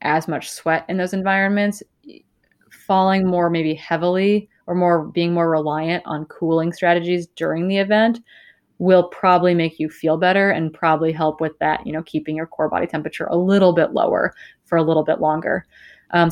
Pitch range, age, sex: 160-195 Hz, 20-39, female